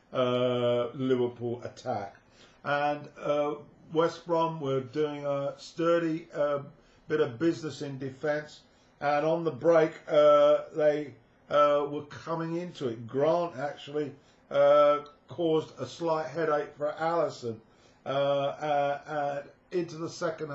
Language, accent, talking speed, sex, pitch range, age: English, British, 120 wpm, male, 140-165 Hz, 50-69